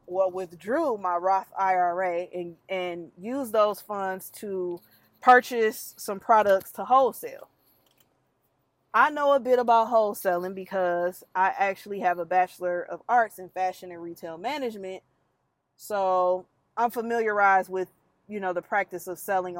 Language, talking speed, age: English, 140 wpm, 20-39